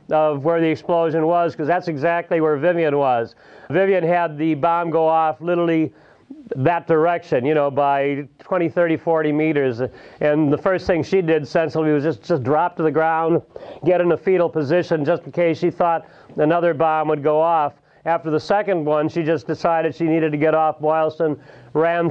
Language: English